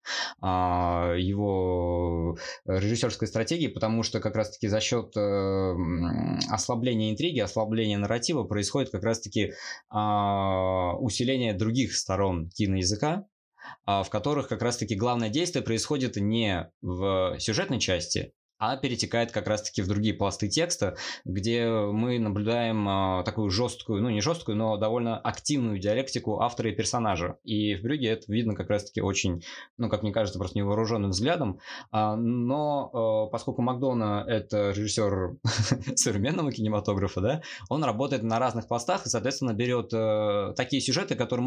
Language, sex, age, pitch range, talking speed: Russian, male, 20-39, 100-125 Hz, 130 wpm